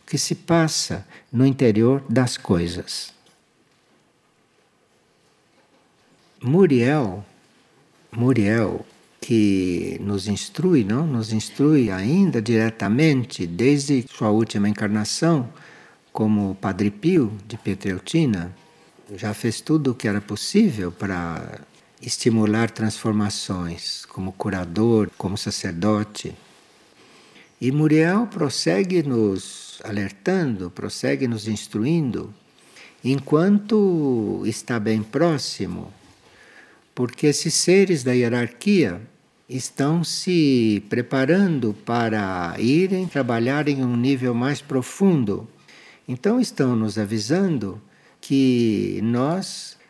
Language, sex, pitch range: Portuguese, male, 105-155 Hz